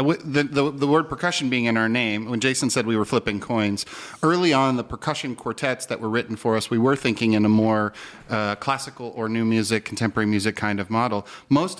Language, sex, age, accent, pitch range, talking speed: German, male, 40-59, American, 115-150 Hz, 215 wpm